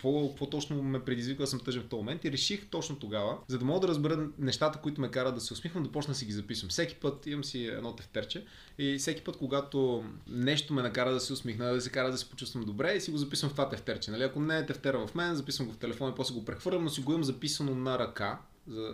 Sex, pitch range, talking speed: male, 115-145 Hz, 270 wpm